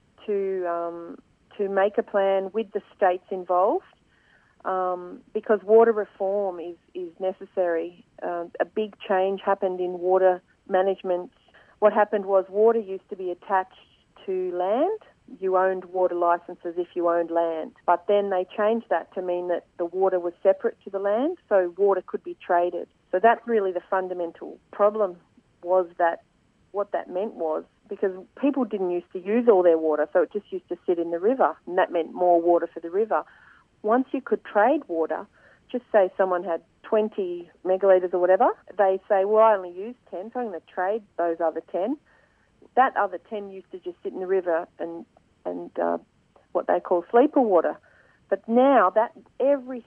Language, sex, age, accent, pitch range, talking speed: English, female, 40-59, Australian, 175-215 Hz, 180 wpm